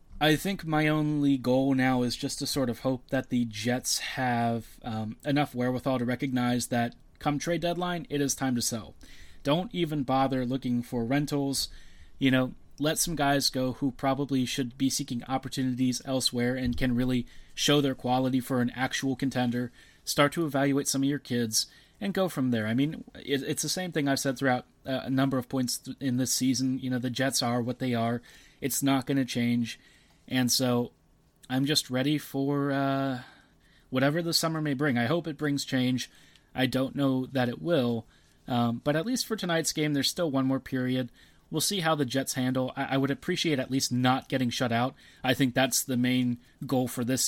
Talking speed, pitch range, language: 200 wpm, 125-140 Hz, English